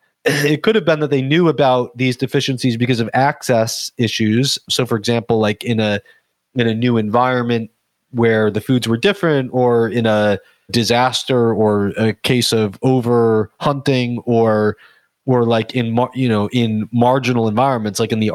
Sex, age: male, 30-49